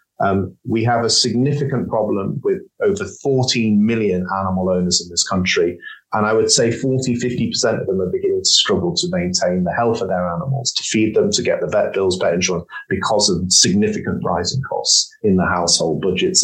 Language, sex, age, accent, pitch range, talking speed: English, male, 30-49, British, 110-170 Hz, 195 wpm